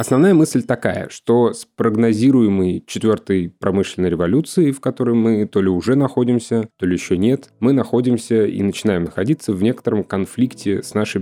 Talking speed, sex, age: 160 wpm, male, 20-39